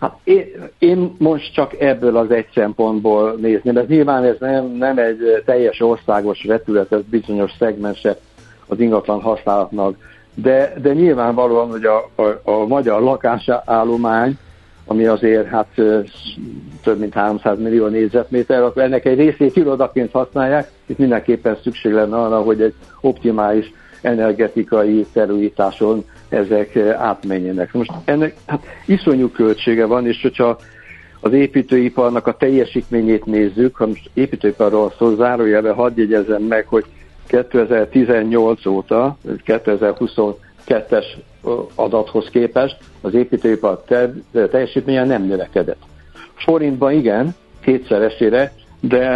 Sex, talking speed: male, 115 wpm